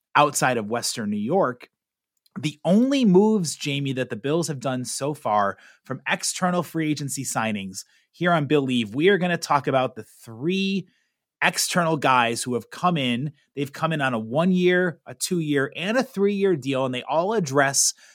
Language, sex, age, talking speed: English, male, 30-49, 180 wpm